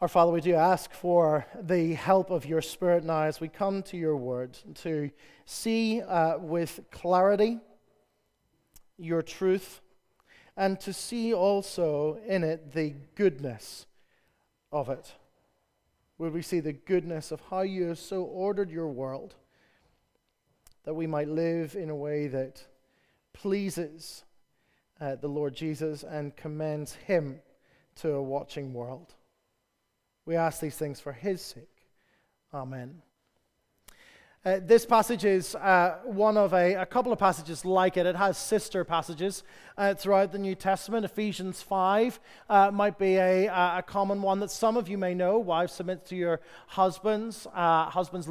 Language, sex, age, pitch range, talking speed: English, male, 30-49, 160-200 Hz, 150 wpm